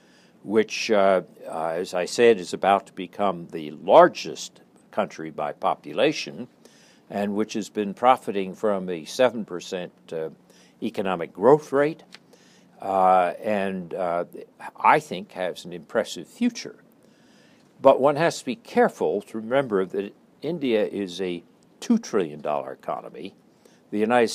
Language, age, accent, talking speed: English, 60-79, American, 130 wpm